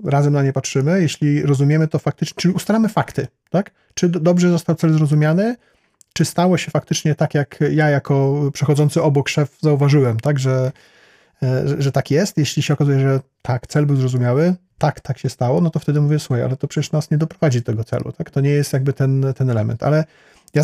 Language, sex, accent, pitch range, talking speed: Polish, male, native, 135-160 Hz, 205 wpm